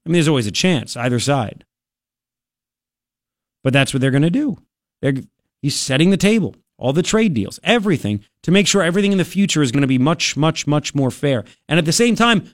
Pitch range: 130-190 Hz